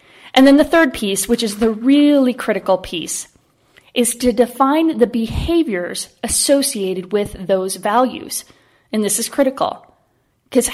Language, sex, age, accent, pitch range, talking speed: English, female, 30-49, American, 210-255 Hz, 140 wpm